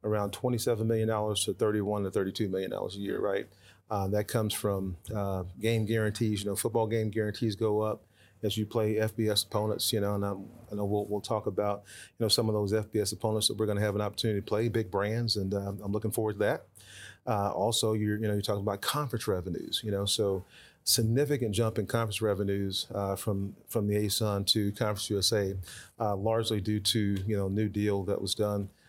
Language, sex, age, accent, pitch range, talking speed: English, male, 30-49, American, 100-115 Hz, 210 wpm